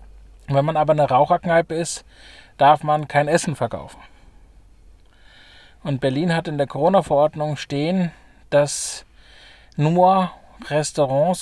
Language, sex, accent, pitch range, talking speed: German, male, German, 135-160 Hz, 110 wpm